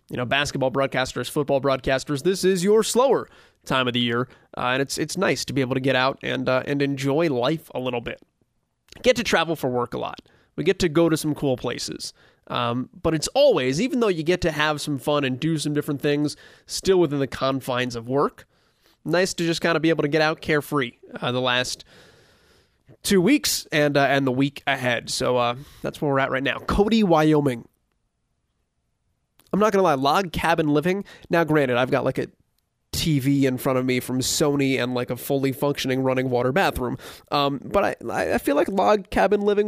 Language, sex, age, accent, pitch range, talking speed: English, male, 20-39, American, 130-165 Hz, 215 wpm